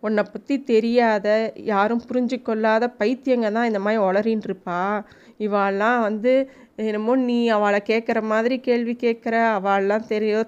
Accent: native